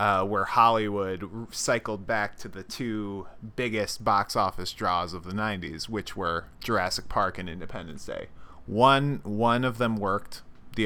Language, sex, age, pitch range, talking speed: English, male, 20-39, 100-120 Hz, 155 wpm